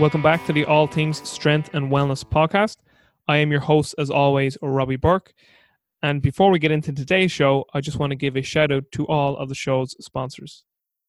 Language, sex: English, male